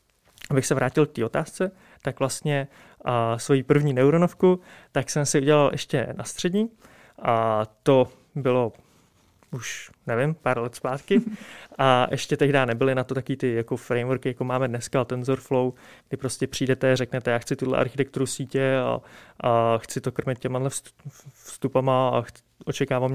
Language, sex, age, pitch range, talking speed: Czech, male, 20-39, 125-145 Hz, 160 wpm